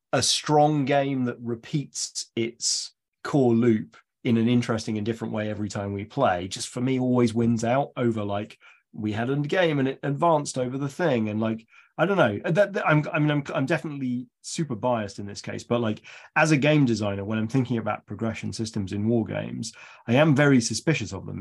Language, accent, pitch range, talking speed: English, British, 105-125 Hz, 210 wpm